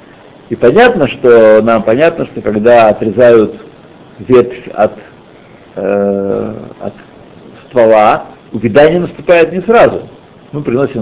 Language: Russian